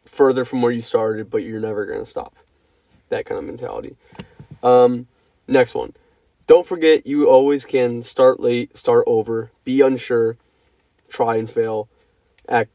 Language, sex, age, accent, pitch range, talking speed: English, male, 20-39, American, 110-165 Hz, 150 wpm